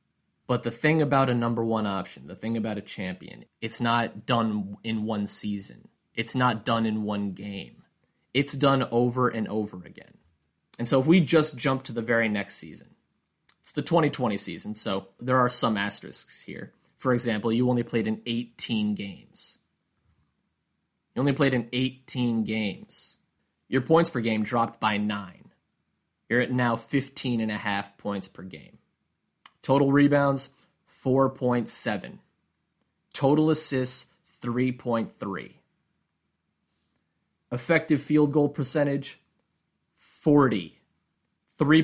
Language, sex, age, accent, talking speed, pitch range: English, male, 20-39, American, 130 wpm, 110-150 Hz